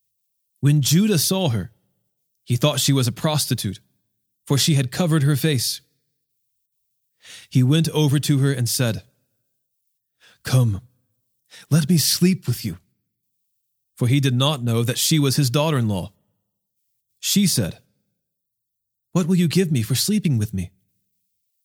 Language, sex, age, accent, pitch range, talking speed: English, male, 30-49, American, 115-155 Hz, 140 wpm